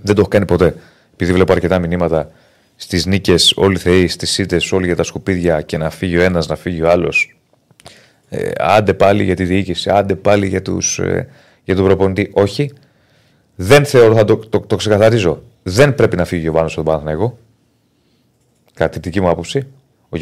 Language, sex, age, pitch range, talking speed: Greek, male, 30-49, 90-120 Hz, 185 wpm